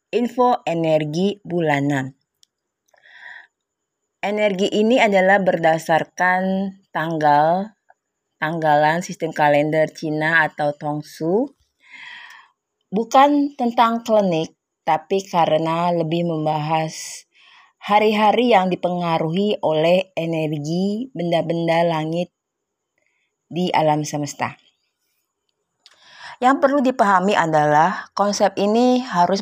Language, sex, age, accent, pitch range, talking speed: Indonesian, female, 30-49, native, 155-205 Hz, 80 wpm